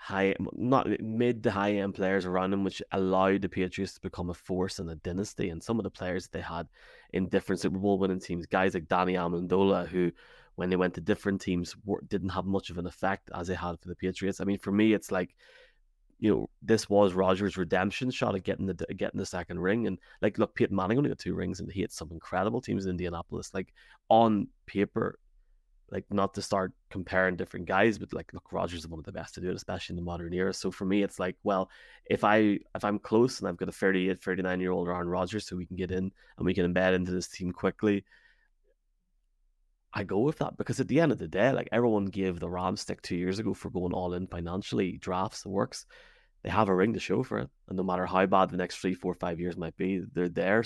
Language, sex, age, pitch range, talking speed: English, male, 20-39, 90-100 Hz, 245 wpm